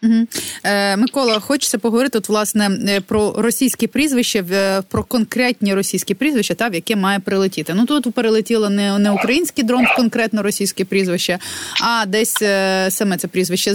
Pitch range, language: 190-240 Hz, Ukrainian